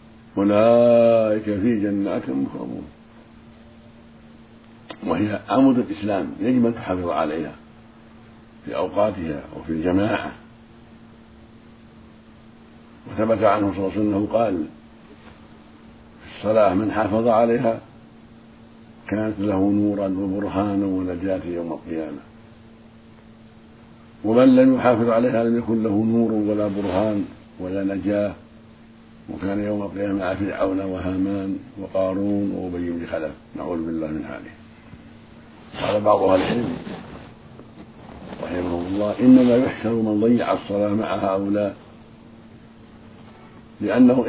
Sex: male